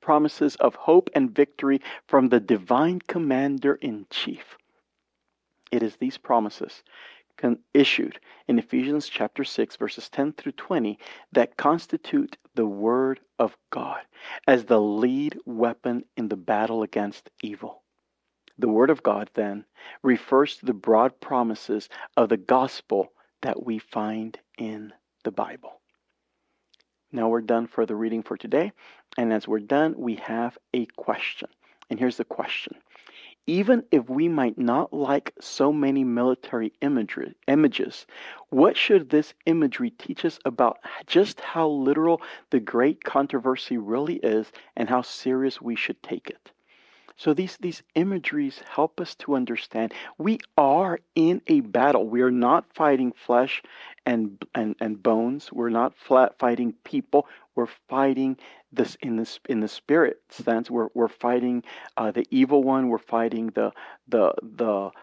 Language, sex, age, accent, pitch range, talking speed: English, male, 50-69, American, 115-150 Hz, 145 wpm